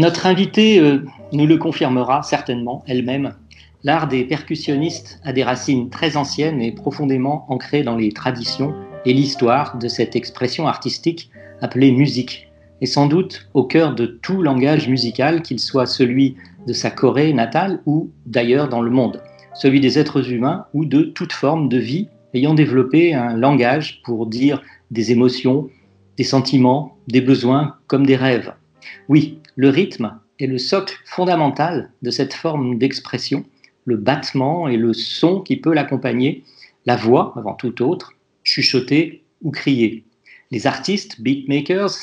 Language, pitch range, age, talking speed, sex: French, 125-155 Hz, 40-59, 150 wpm, male